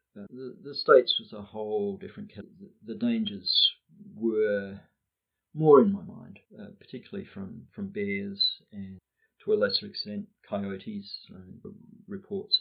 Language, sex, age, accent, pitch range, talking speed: English, male, 40-59, Australian, 125-210 Hz, 140 wpm